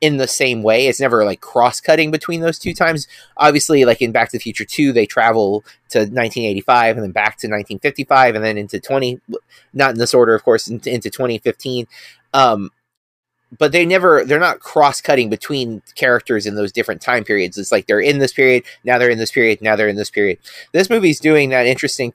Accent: American